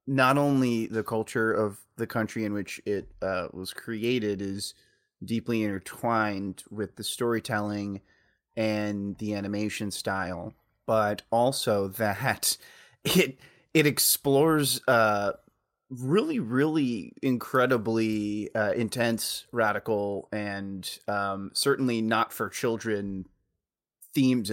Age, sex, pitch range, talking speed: 30-49, male, 105-130 Hz, 100 wpm